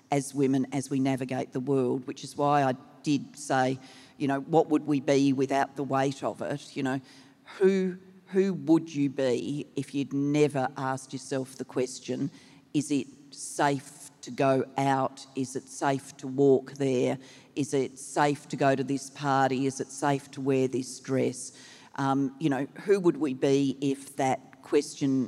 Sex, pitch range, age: female, 130-140 Hz, 40-59